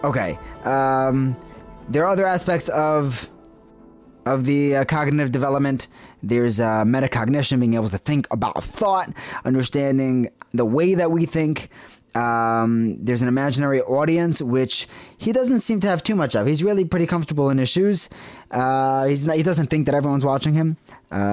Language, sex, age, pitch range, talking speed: English, male, 20-39, 110-145 Hz, 165 wpm